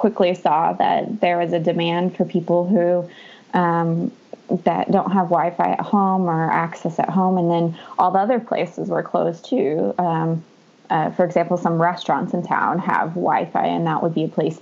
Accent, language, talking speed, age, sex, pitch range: American, English, 190 wpm, 20-39, female, 165-185 Hz